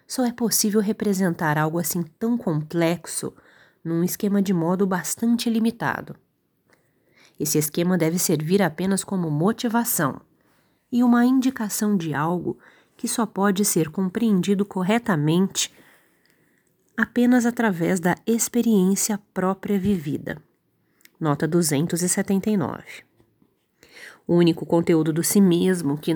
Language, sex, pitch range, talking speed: Portuguese, female, 170-215 Hz, 110 wpm